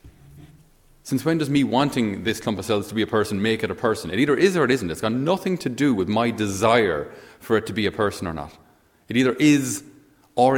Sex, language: male, English